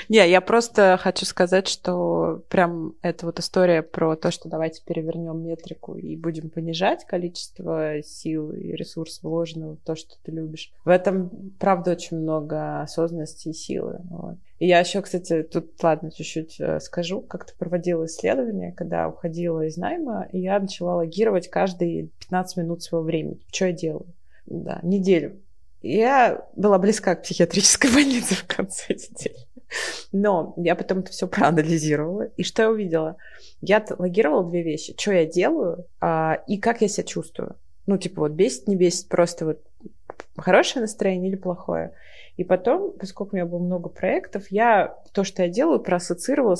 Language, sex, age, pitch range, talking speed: Russian, female, 20-39, 160-190 Hz, 160 wpm